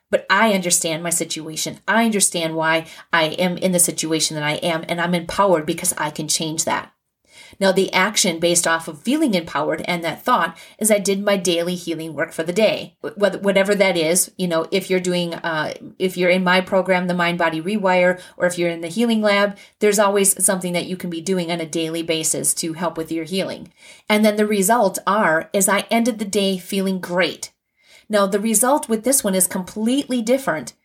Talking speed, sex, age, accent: 210 wpm, female, 30-49, American